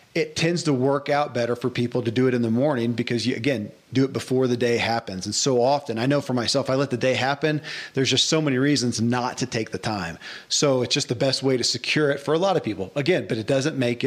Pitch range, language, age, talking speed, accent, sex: 115-140 Hz, English, 40-59, 275 wpm, American, male